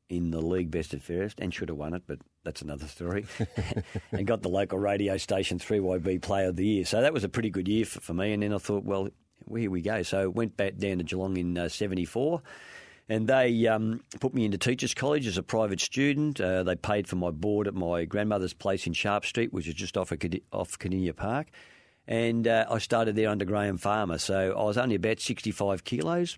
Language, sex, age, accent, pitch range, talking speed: English, male, 50-69, Australian, 90-110 Hz, 230 wpm